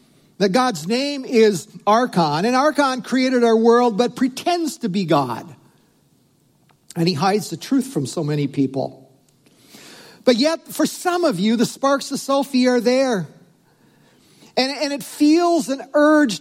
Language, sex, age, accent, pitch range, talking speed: English, male, 50-69, American, 155-255 Hz, 155 wpm